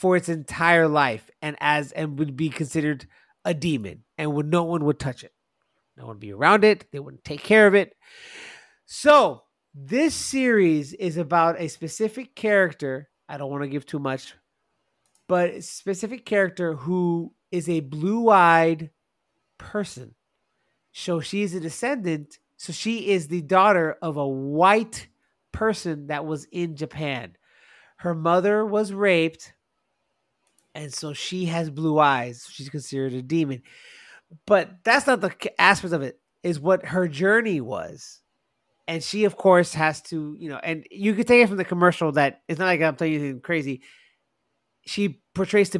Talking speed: 165 wpm